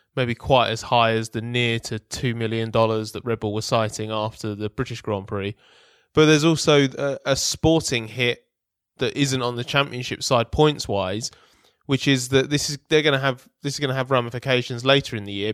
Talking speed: 210 wpm